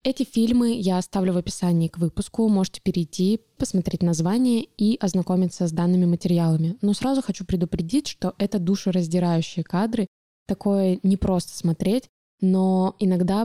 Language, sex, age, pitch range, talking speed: Russian, female, 20-39, 180-210 Hz, 135 wpm